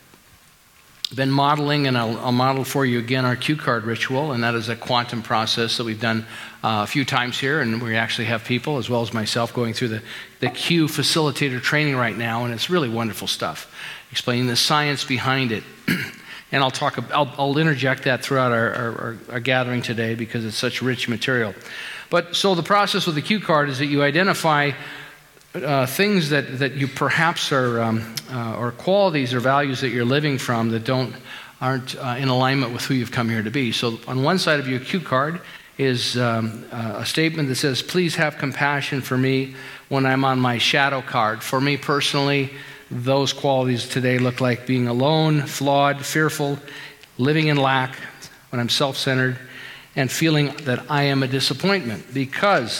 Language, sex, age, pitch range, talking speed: English, male, 50-69, 120-145 Hz, 195 wpm